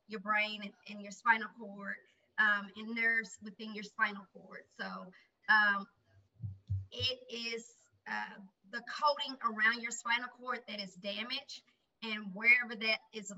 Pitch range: 205-240 Hz